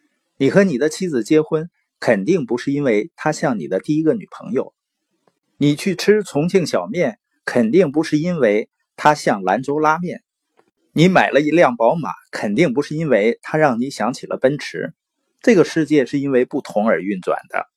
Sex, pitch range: male, 140-220 Hz